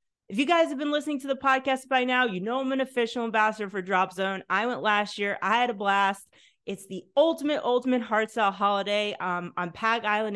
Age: 30-49